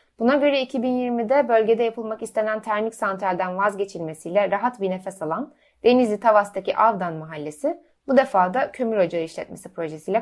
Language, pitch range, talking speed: Turkish, 190-255 Hz, 140 wpm